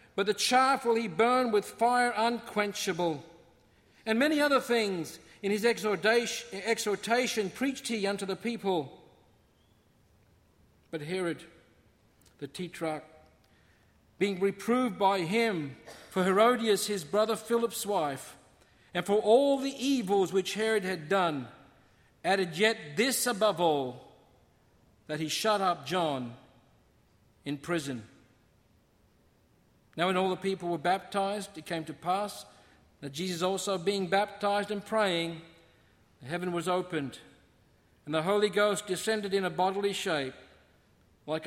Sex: male